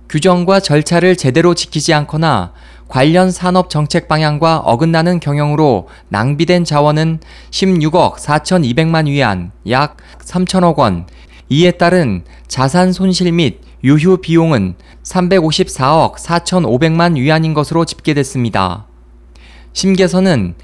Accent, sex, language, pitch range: native, male, Korean, 125-175 Hz